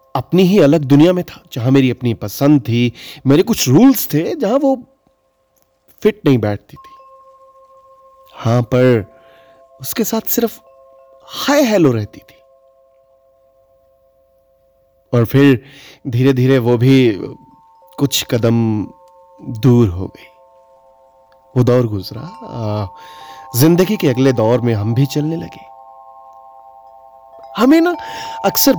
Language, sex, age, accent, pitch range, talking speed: Hindi, male, 30-49, native, 115-170 Hz, 115 wpm